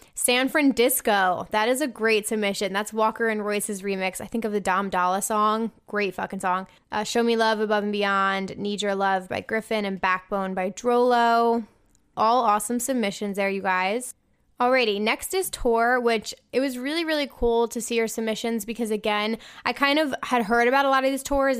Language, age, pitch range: English, 10-29, 200-240 Hz